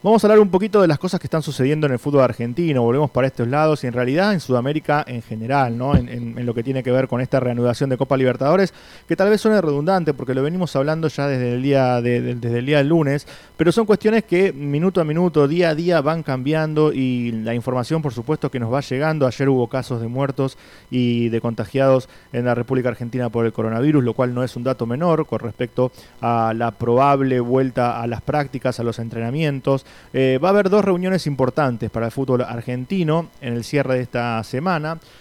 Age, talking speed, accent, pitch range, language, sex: 20-39, 225 wpm, Argentinian, 120-155 Hz, English, male